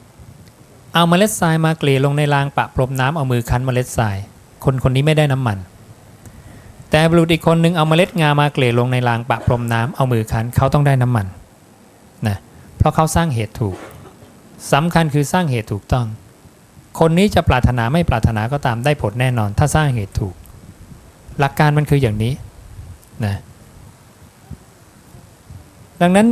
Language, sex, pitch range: English, male, 110-140 Hz